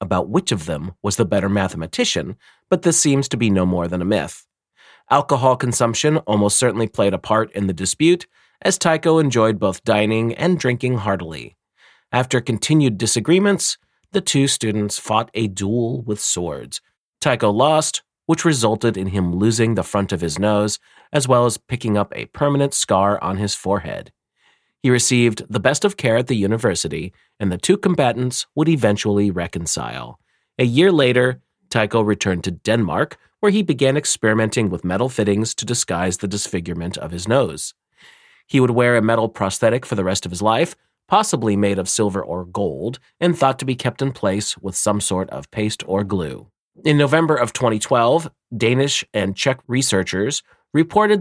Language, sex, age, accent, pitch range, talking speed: English, male, 30-49, American, 100-130 Hz, 175 wpm